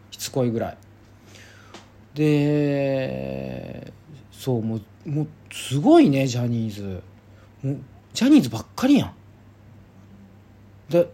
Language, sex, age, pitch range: Japanese, male, 40-59, 100-140 Hz